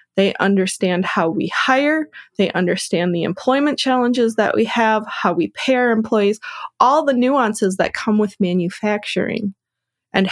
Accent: American